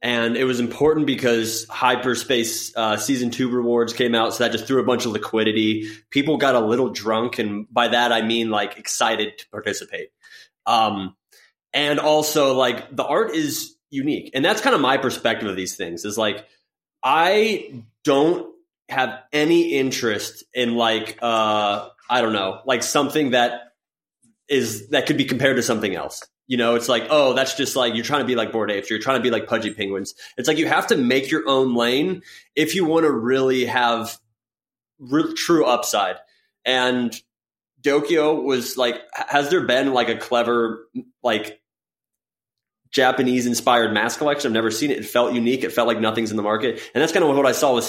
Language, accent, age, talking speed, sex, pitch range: English, American, 20-39, 190 wpm, male, 115-140 Hz